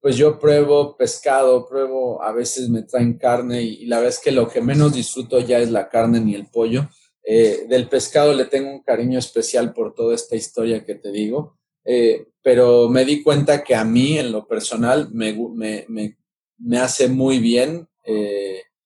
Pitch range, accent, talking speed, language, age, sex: 120-155 Hz, Mexican, 195 wpm, Spanish, 40-59, male